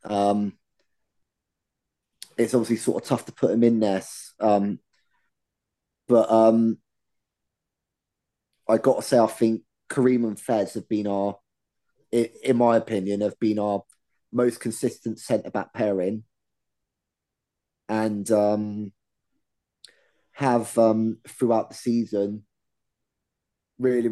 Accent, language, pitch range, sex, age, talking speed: British, English, 100-115 Hz, male, 20-39, 110 wpm